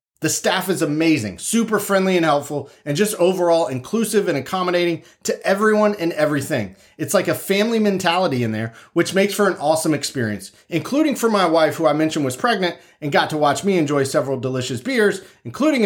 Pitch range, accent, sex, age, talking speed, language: 140-190 Hz, American, male, 30-49, 190 wpm, English